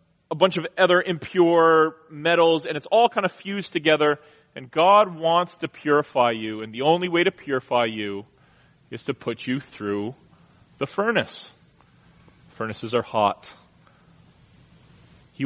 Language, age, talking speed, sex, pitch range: English, 30-49, 145 wpm, male, 130-175 Hz